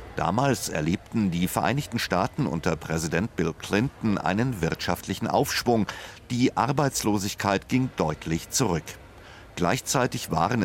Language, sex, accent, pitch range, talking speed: German, male, German, 85-125 Hz, 105 wpm